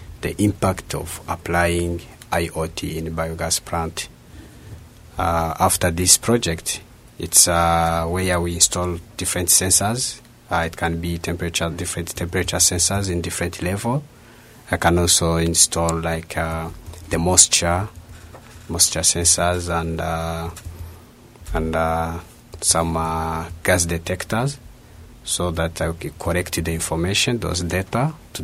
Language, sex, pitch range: Japanese, male, 85-90 Hz